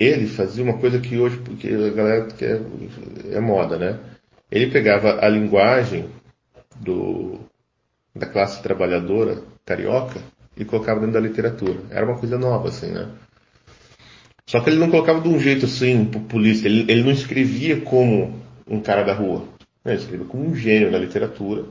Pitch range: 105-120 Hz